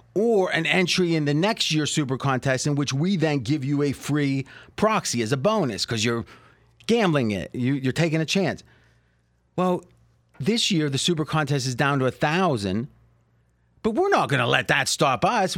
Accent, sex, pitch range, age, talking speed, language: American, male, 125-175 Hz, 30-49, 185 wpm, English